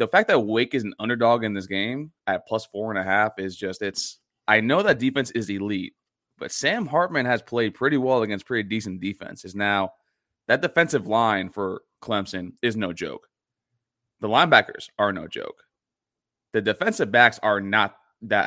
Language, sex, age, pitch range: English, male, 20-39, 95-120 Hz